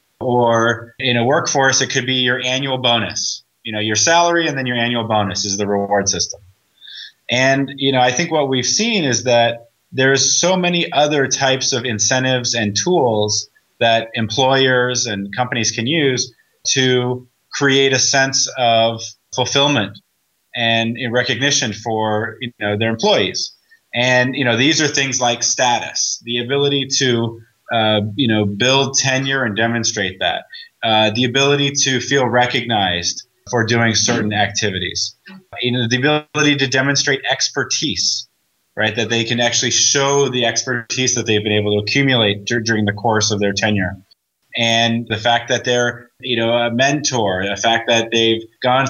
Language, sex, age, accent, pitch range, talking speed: English, male, 30-49, American, 115-135 Hz, 165 wpm